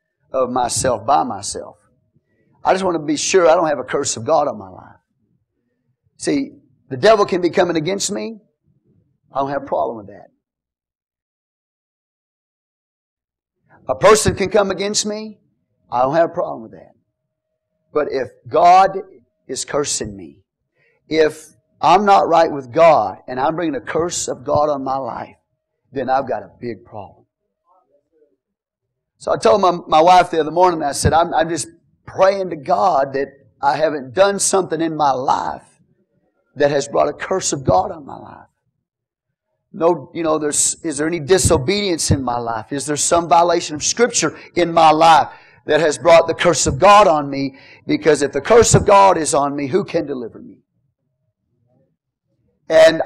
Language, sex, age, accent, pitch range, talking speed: English, male, 40-59, American, 130-180 Hz, 175 wpm